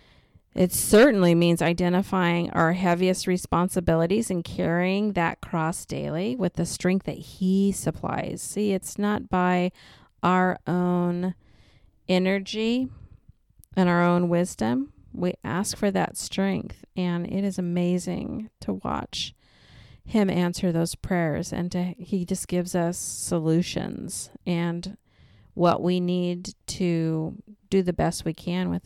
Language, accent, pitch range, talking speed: English, American, 170-200 Hz, 125 wpm